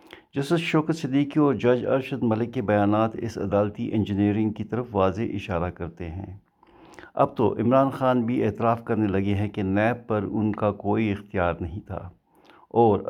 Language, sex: Urdu, male